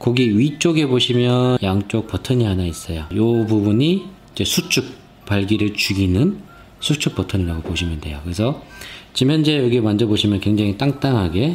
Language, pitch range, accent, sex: Korean, 95-135 Hz, native, male